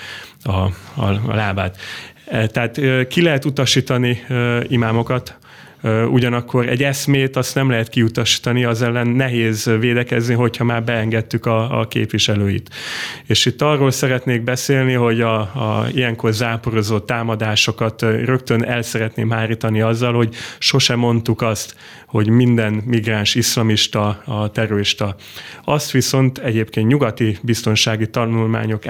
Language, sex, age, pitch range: Hungarian, male, 30-49, 110-125 Hz